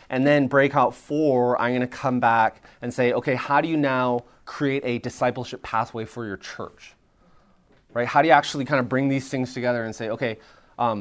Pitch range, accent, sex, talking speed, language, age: 115-140 Hz, American, male, 205 wpm, English, 20-39